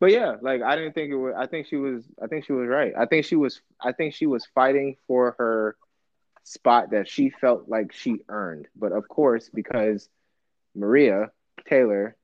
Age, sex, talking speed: 20-39, male, 200 wpm